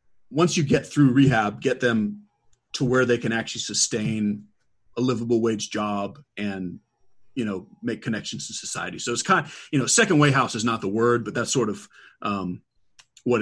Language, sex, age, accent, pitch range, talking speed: English, male, 30-49, American, 105-135 Hz, 190 wpm